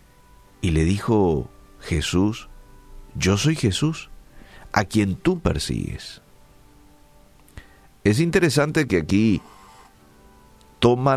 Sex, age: male, 50-69